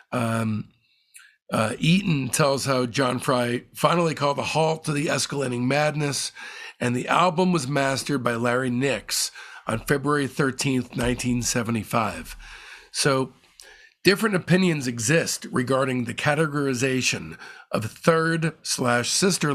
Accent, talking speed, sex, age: American, 115 wpm, male, 50-69